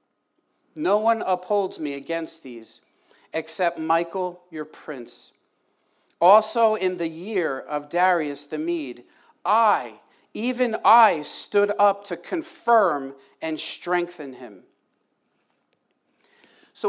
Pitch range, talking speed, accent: 170-225 Hz, 105 wpm, American